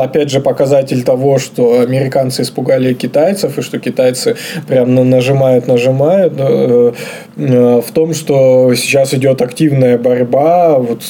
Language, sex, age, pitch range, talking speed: Russian, male, 20-39, 125-145 Hz, 125 wpm